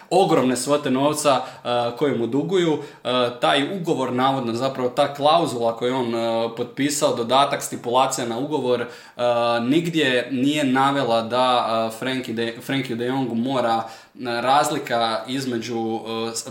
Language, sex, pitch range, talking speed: Croatian, male, 120-145 Hz, 135 wpm